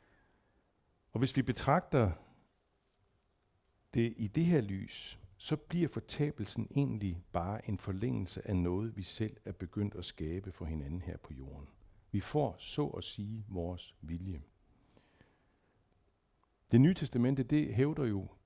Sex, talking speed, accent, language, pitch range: male, 135 wpm, native, Danish, 95-125 Hz